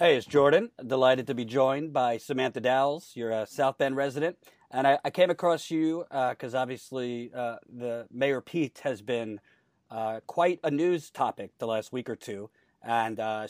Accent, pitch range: American, 115-145 Hz